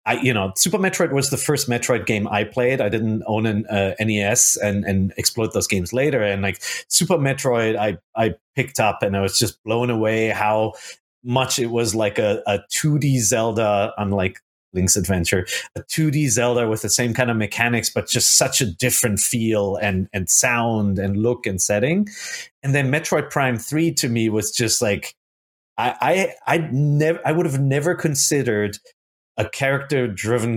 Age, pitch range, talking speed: 30-49, 100-125 Hz, 185 wpm